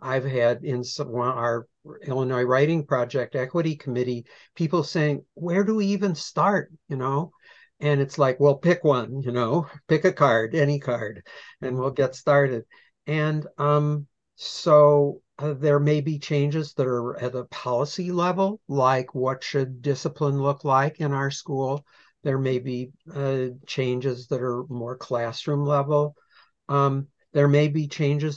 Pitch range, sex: 130-150 Hz, male